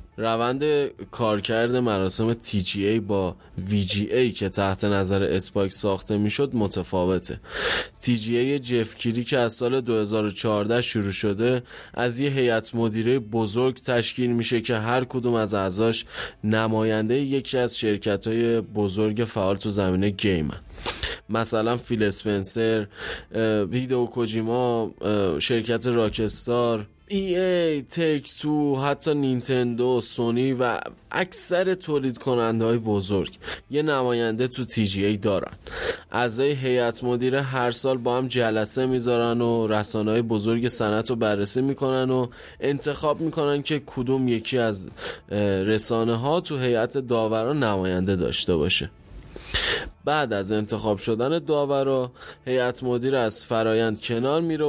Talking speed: 130 wpm